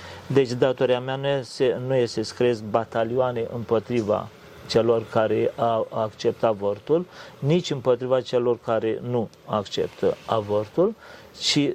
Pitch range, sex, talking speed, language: 110-130 Hz, male, 110 wpm, Romanian